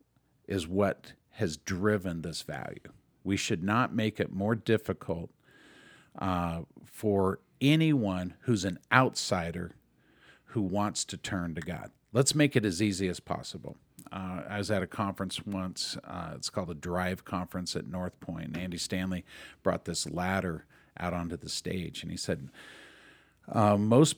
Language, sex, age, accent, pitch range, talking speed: English, male, 50-69, American, 90-115 Hz, 160 wpm